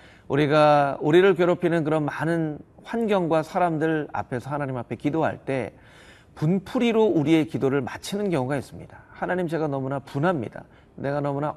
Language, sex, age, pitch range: Korean, male, 40-59, 120-180 Hz